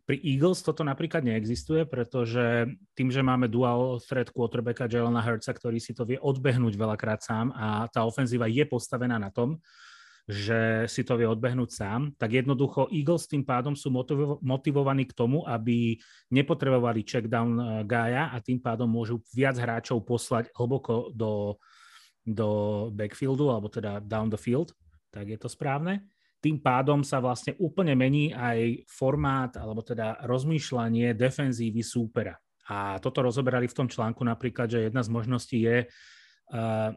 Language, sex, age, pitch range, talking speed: Slovak, male, 30-49, 115-135 Hz, 150 wpm